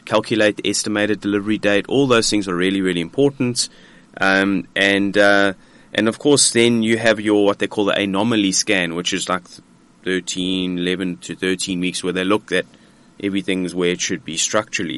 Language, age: English, 30-49